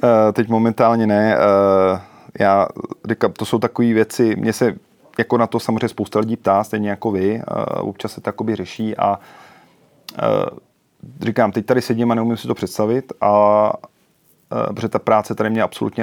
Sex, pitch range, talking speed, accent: male, 105-115 Hz, 155 wpm, native